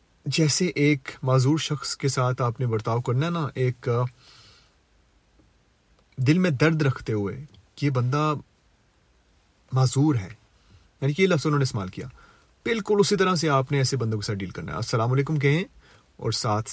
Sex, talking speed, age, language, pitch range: male, 170 wpm, 30-49, Urdu, 115-145 Hz